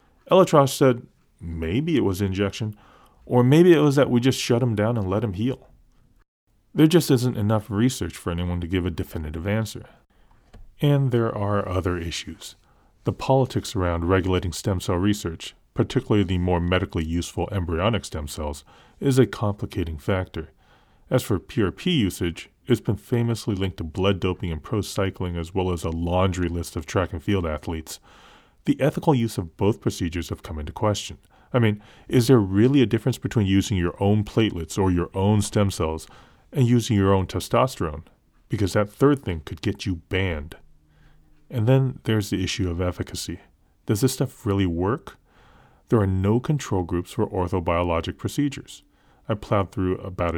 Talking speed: 175 wpm